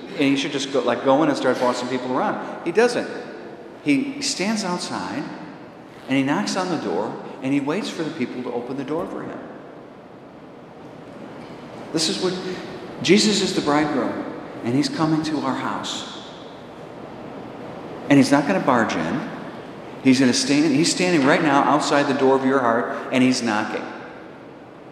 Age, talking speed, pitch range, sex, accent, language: 50-69, 175 wpm, 110-145 Hz, male, American, English